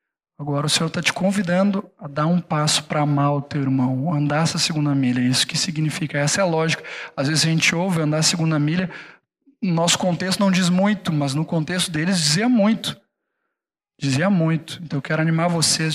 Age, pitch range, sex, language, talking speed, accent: 20-39, 150-175 Hz, male, Portuguese, 205 wpm, Brazilian